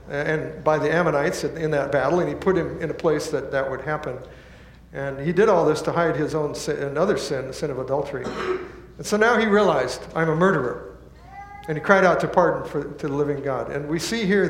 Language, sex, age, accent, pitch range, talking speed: English, male, 60-79, American, 145-190 Hz, 235 wpm